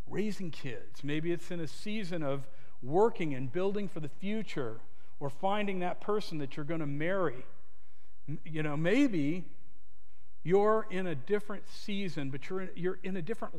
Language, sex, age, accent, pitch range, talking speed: English, male, 50-69, American, 130-185 Hz, 165 wpm